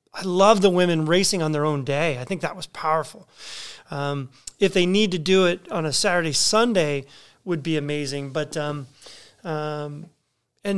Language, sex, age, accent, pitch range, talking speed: English, male, 30-49, American, 155-190 Hz, 180 wpm